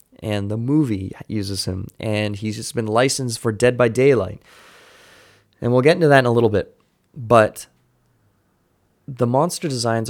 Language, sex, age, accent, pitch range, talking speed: English, male, 20-39, American, 100-125 Hz, 160 wpm